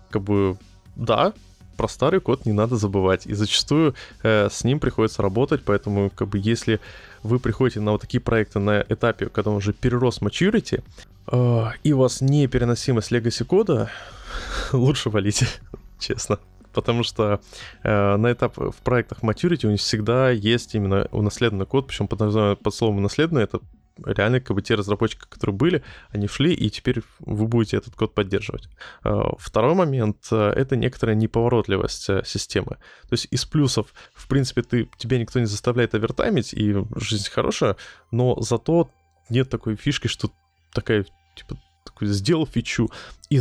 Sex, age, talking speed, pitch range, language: male, 20-39, 160 wpm, 100-125 Hz, Russian